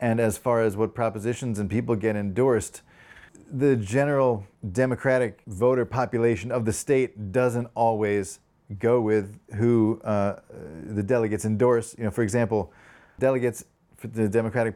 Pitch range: 105-125 Hz